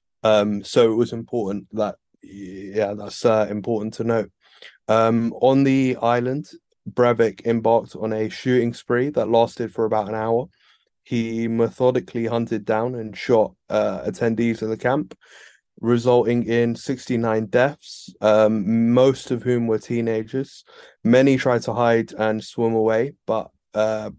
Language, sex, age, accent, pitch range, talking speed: English, male, 20-39, British, 110-120 Hz, 145 wpm